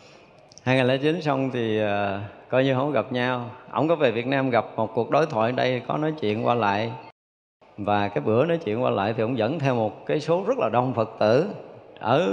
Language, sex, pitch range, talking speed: Vietnamese, male, 110-135 Hz, 225 wpm